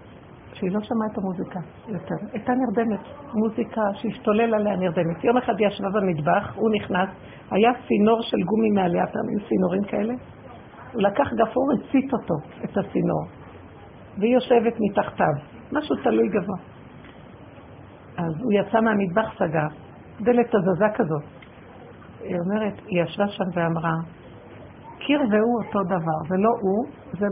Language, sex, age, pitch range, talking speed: Hebrew, female, 50-69, 185-240 Hz, 135 wpm